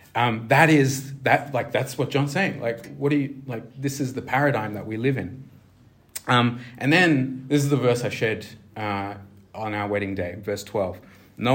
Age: 30-49